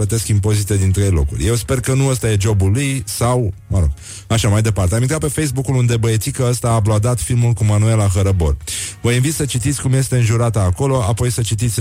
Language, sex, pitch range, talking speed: Romanian, male, 95-120 Hz, 215 wpm